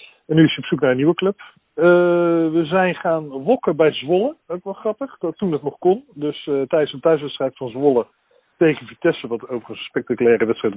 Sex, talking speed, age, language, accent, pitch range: male, 210 wpm, 40-59, Dutch, Dutch, 125-170 Hz